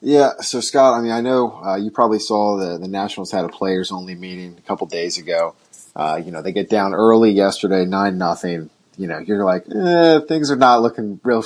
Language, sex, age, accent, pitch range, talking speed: English, male, 30-49, American, 95-115 Hz, 225 wpm